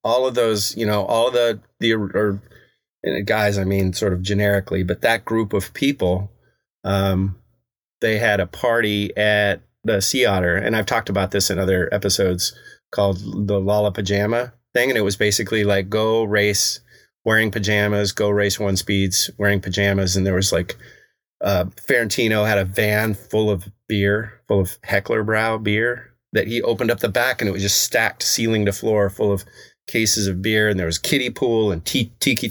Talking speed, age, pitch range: 190 wpm, 30-49, 95-110 Hz